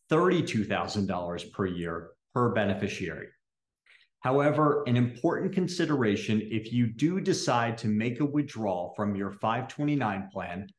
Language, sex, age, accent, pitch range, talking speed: English, male, 40-59, American, 105-140 Hz, 110 wpm